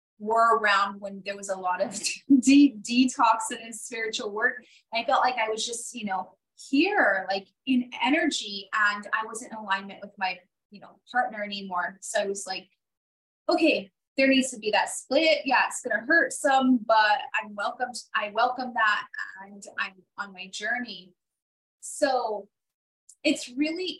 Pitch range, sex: 205-270 Hz, female